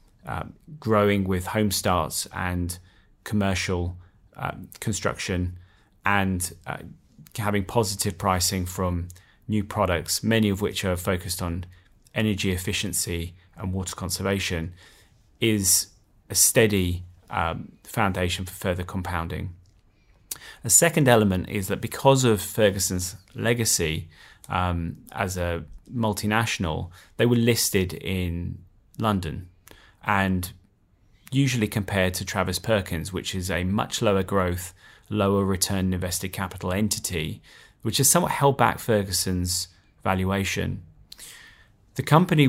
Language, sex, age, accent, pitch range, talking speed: English, male, 30-49, British, 90-105 Hz, 115 wpm